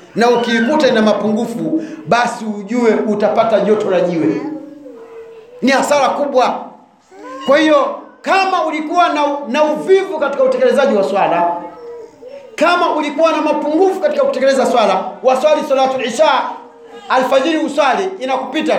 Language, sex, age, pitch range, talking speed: Swahili, male, 40-59, 250-310 Hz, 110 wpm